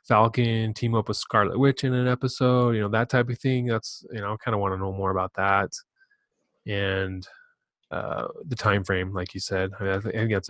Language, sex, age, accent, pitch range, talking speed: English, male, 20-39, American, 100-120 Hz, 230 wpm